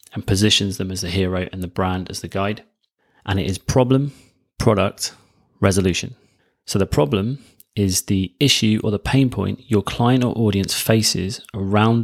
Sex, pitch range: male, 95-115 Hz